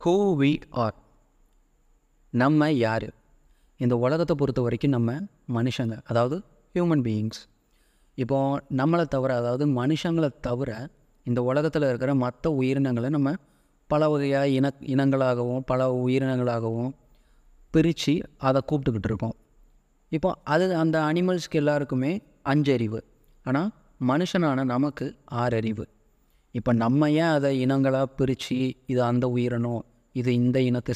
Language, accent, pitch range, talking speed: Tamil, native, 120-150 Hz, 110 wpm